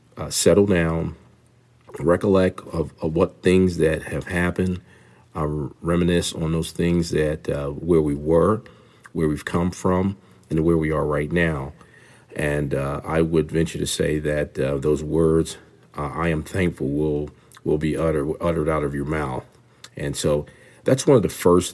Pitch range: 75-85 Hz